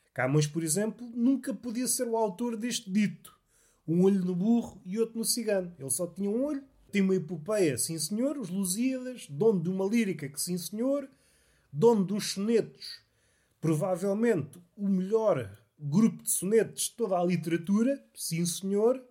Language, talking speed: Portuguese, 165 wpm